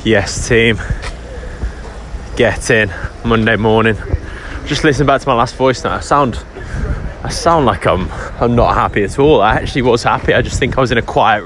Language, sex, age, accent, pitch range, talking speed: English, male, 20-39, British, 105-135 Hz, 195 wpm